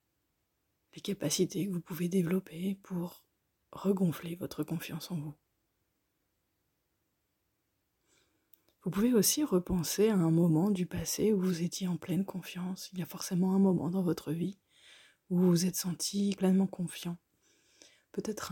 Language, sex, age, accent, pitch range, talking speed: French, female, 30-49, French, 165-195 Hz, 145 wpm